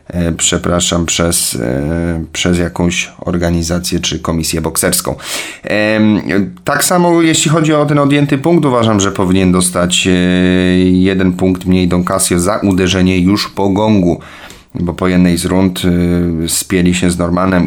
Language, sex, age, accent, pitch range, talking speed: Polish, male, 30-49, native, 90-105 Hz, 130 wpm